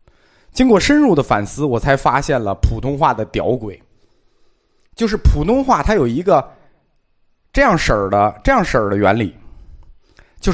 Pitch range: 95-155 Hz